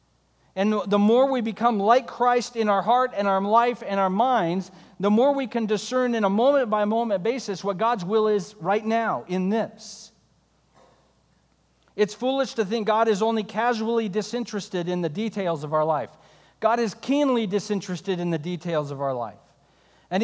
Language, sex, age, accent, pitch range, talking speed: English, male, 40-59, American, 185-235 Hz, 175 wpm